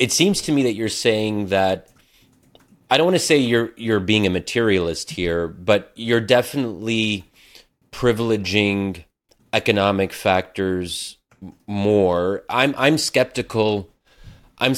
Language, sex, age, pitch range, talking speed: English, male, 30-49, 90-110 Hz, 120 wpm